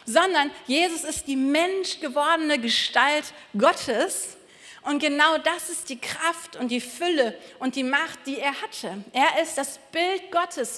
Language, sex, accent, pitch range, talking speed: German, female, German, 255-320 Hz, 155 wpm